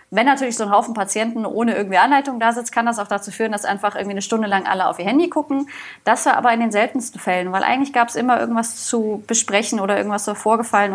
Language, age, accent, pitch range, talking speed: German, 20-39, German, 200-240 Hz, 250 wpm